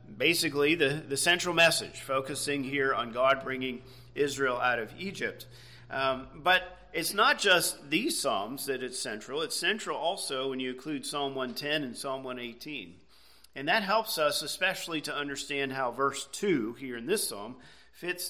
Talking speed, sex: 165 wpm, male